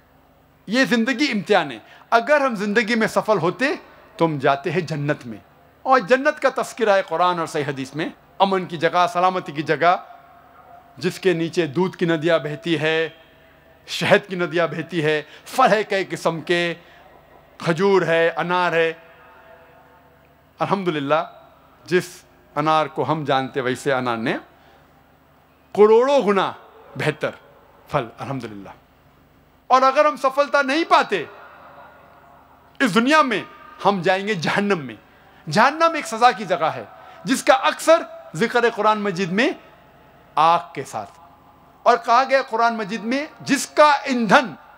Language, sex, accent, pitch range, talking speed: Hindi, male, native, 160-260 Hz, 140 wpm